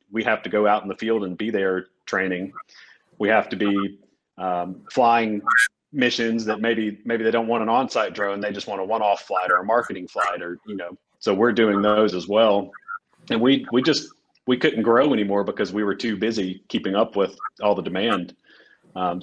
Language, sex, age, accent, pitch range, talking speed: English, male, 40-59, American, 100-110 Hz, 210 wpm